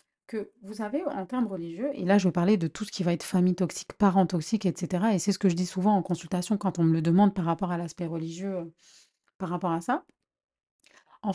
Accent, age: French, 30-49